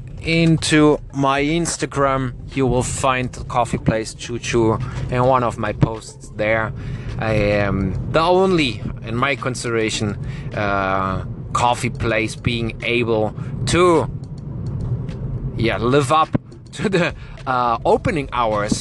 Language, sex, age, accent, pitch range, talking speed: English, male, 20-39, German, 110-135 Hz, 120 wpm